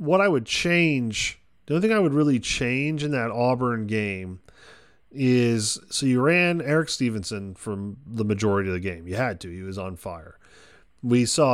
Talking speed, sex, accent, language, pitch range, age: 185 wpm, male, American, English, 100-125 Hz, 30-49